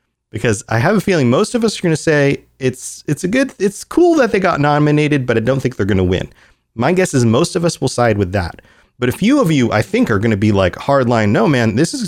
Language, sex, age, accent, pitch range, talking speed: English, male, 30-49, American, 105-150 Hz, 285 wpm